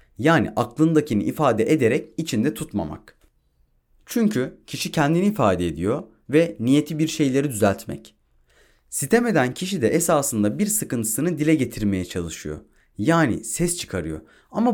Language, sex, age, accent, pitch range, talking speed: Turkish, male, 30-49, native, 105-160 Hz, 120 wpm